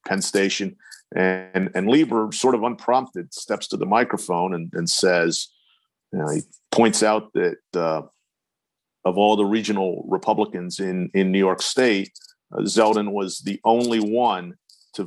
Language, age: English, 40-59